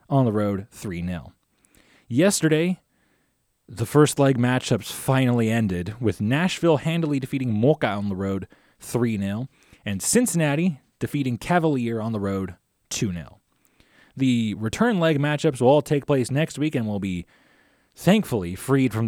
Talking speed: 140 wpm